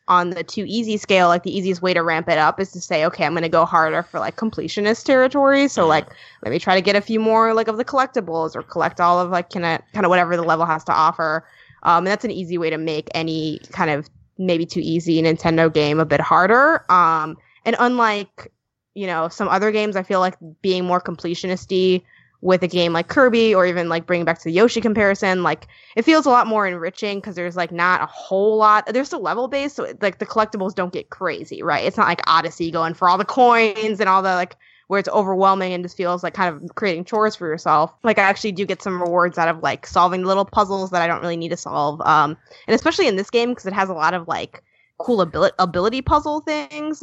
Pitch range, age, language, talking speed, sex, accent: 170-215 Hz, 20-39, English, 240 wpm, female, American